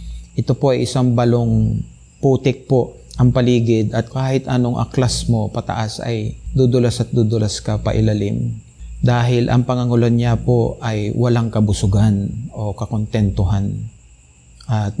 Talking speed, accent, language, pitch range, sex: 130 wpm, native, Filipino, 105-125 Hz, male